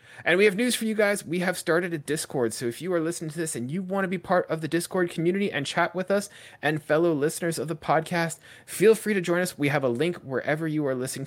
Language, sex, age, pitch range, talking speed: English, male, 20-39, 135-175 Hz, 275 wpm